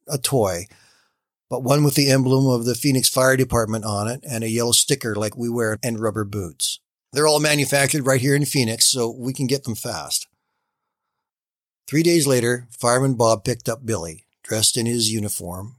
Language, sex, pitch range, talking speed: English, male, 110-140 Hz, 185 wpm